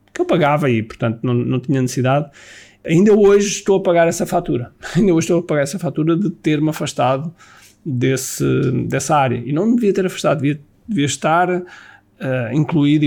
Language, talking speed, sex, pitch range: Portuguese, 170 wpm, male, 140-185 Hz